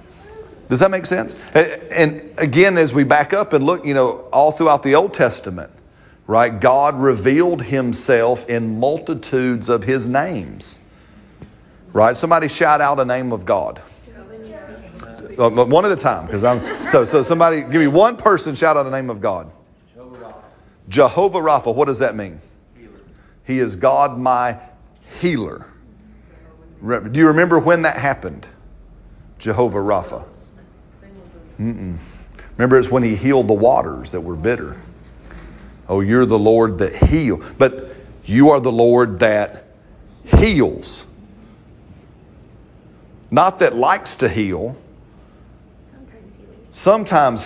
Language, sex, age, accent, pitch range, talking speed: English, male, 40-59, American, 110-150 Hz, 130 wpm